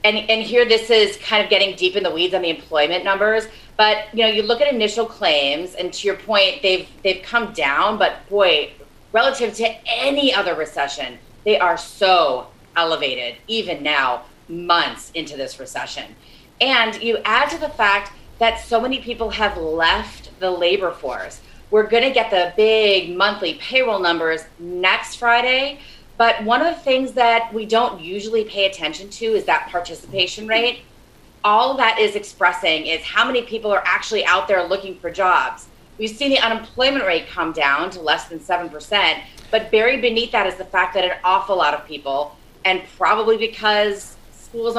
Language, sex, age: English, female, 30-49